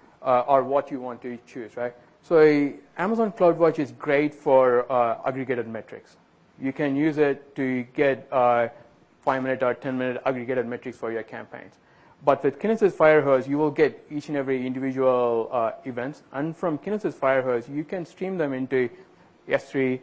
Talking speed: 175 wpm